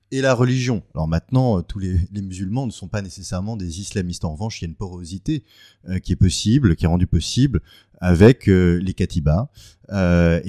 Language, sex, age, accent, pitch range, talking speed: French, male, 30-49, French, 90-115 Hz, 200 wpm